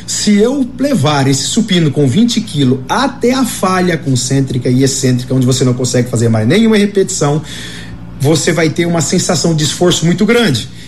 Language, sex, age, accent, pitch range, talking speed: Portuguese, male, 40-59, Brazilian, 135-215 Hz, 170 wpm